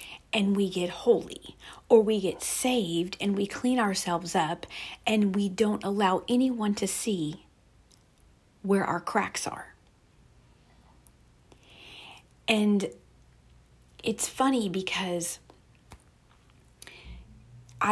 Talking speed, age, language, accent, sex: 95 wpm, 40-59, English, American, female